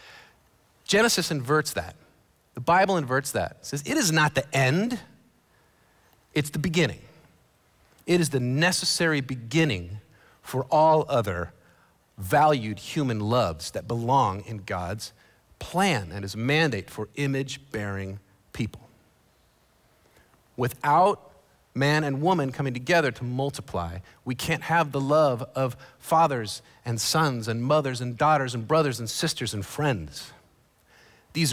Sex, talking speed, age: male, 130 wpm, 40-59